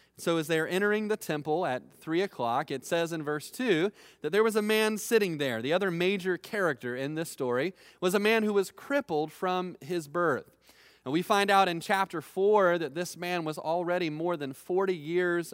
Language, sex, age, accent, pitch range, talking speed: English, male, 30-49, American, 135-185 Hz, 205 wpm